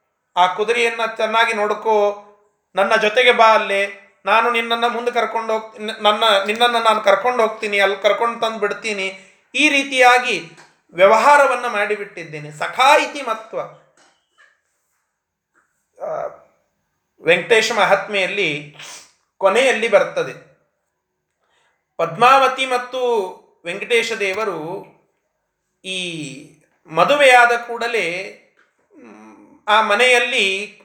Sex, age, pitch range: male, 30-49, 195-240 Hz